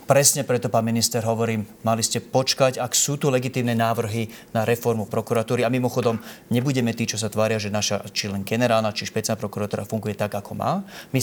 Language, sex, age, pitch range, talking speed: Slovak, male, 30-49, 110-125 Hz, 190 wpm